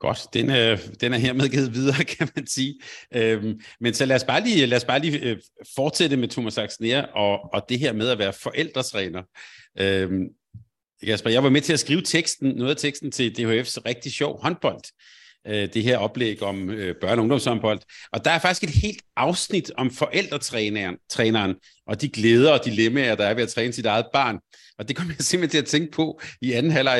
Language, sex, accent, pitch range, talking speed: Danish, male, native, 115-150 Hz, 210 wpm